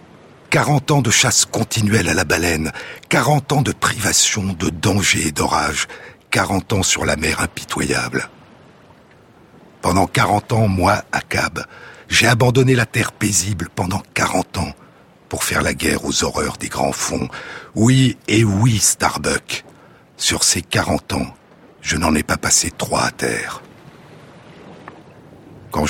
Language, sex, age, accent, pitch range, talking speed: French, male, 60-79, French, 85-120 Hz, 145 wpm